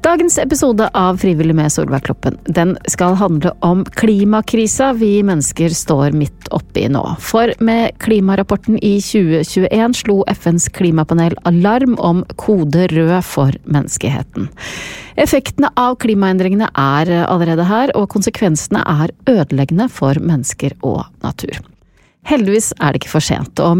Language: English